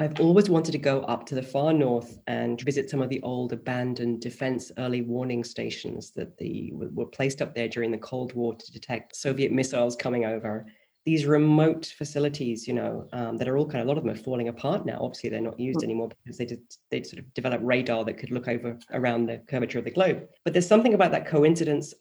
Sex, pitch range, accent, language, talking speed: female, 120-145 Hz, British, English, 230 wpm